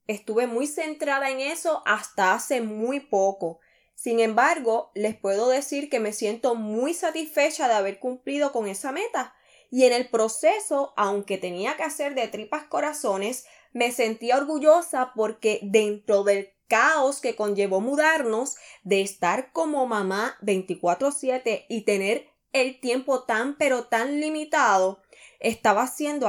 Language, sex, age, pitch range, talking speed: Spanish, female, 10-29, 215-290 Hz, 140 wpm